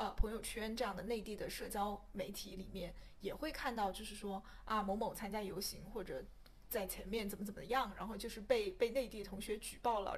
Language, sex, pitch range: Chinese, female, 195-235 Hz